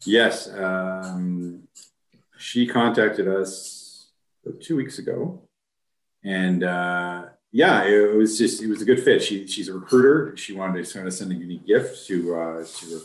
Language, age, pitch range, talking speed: English, 40-59, 85-110 Hz, 155 wpm